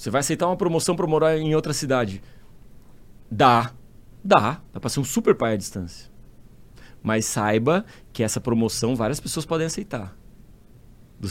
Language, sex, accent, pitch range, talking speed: Portuguese, male, Brazilian, 110-160 Hz, 160 wpm